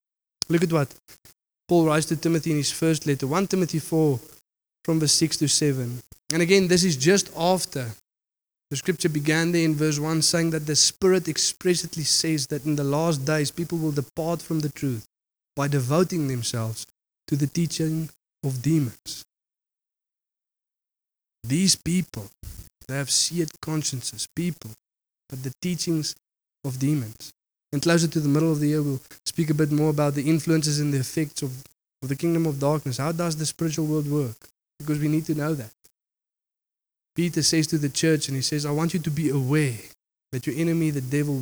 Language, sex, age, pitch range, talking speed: English, male, 20-39, 140-160 Hz, 180 wpm